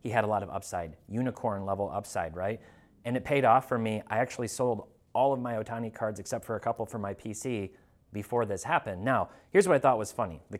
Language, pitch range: English, 100-130 Hz